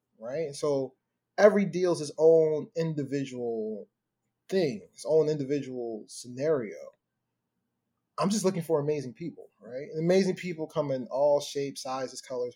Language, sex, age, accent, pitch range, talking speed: English, male, 20-39, American, 140-185 Hz, 145 wpm